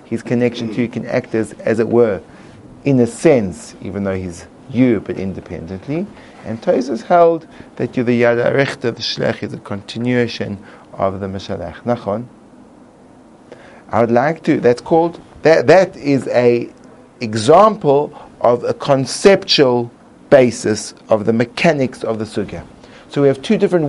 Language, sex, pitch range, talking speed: English, male, 115-150 Hz, 150 wpm